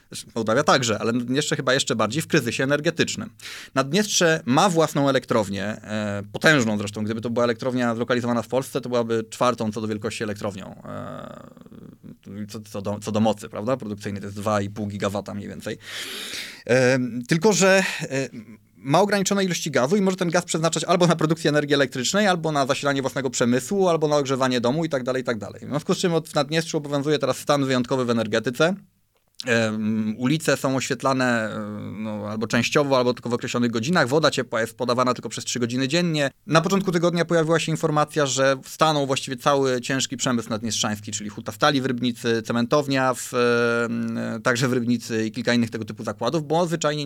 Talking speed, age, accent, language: 170 wpm, 20-39, native, Polish